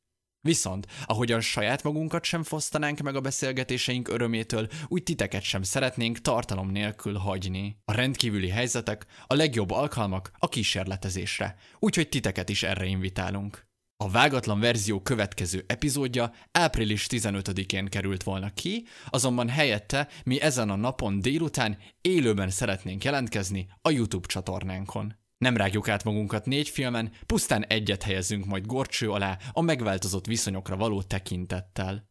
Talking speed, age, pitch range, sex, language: 130 wpm, 20-39, 100-130 Hz, male, Hungarian